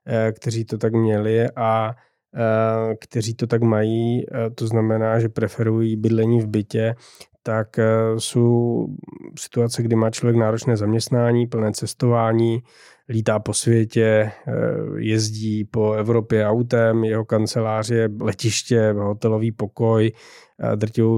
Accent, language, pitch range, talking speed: native, Czech, 110-115 Hz, 110 wpm